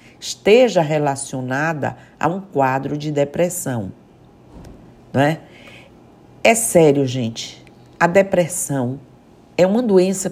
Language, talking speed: Portuguese, 100 wpm